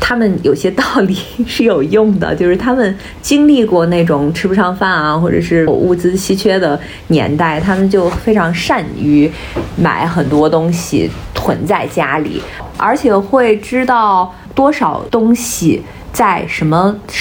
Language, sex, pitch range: Chinese, female, 165-225 Hz